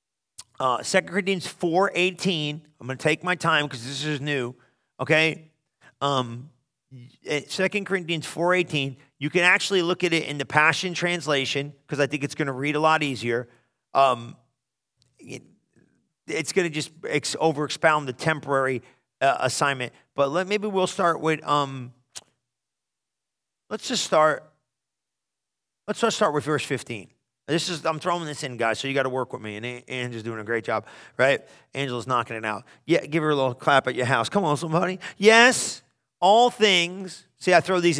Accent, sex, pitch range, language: American, male, 130-170 Hz, English